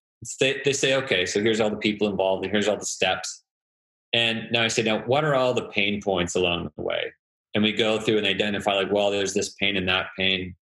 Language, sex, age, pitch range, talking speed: English, male, 30-49, 100-115 Hz, 235 wpm